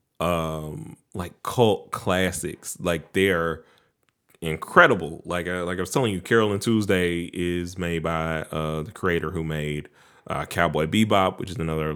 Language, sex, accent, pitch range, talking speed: English, male, American, 80-100 Hz, 150 wpm